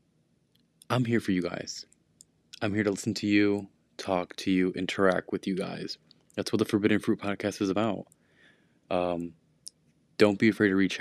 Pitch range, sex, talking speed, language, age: 90-105 Hz, male, 175 wpm, English, 20-39